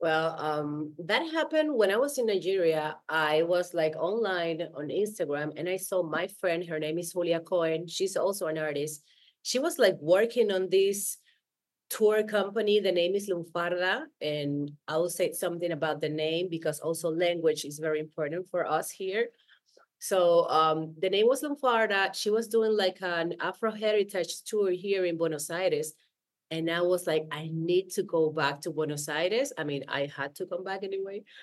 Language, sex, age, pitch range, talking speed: English, female, 30-49, 160-210 Hz, 185 wpm